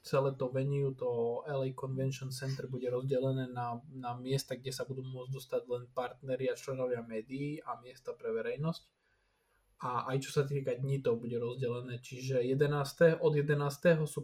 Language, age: Slovak, 20-39